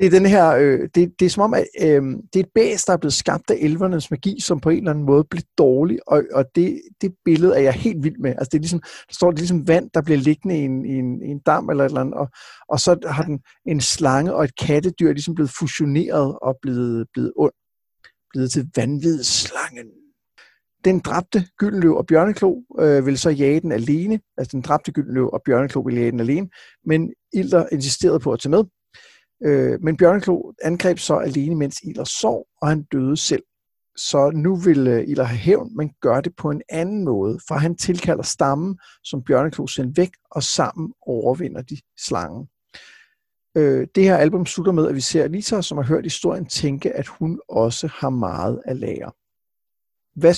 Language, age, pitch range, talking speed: Danish, 60-79, 140-175 Hz, 205 wpm